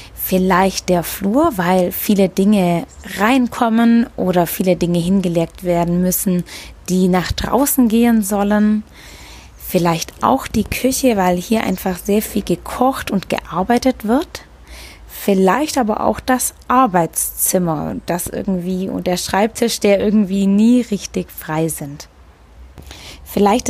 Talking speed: 120 wpm